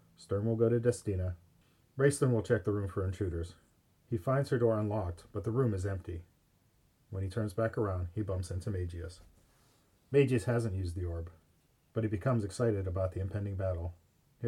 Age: 40-59